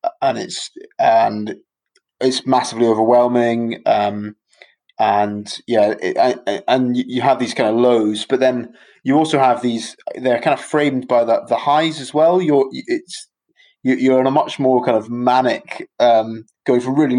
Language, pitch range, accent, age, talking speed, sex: English, 110-135 Hz, British, 20-39, 170 wpm, male